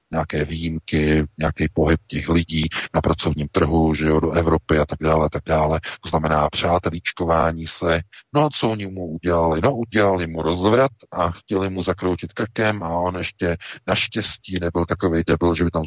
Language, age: Czech, 50-69